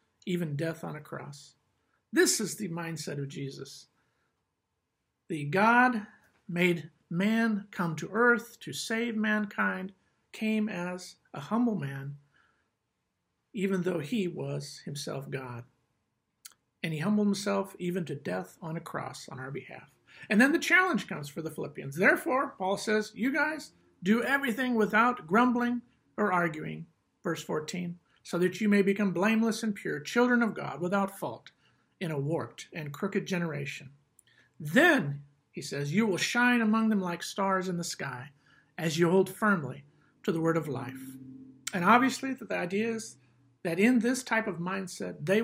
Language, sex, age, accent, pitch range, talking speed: English, male, 50-69, American, 150-215 Hz, 155 wpm